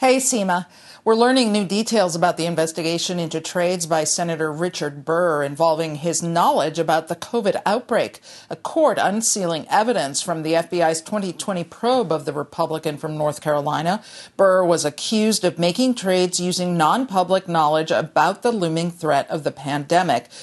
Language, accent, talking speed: English, American, 155 wpm